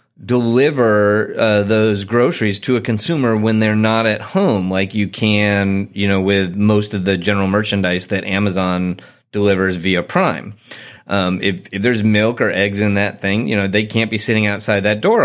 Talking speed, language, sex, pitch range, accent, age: 185 wpm, English, male, 105-130 Hz, American, 30-49